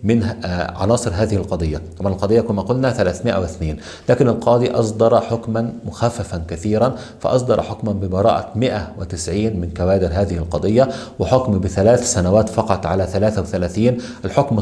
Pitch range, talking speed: 90-115 Hz, 125 wpm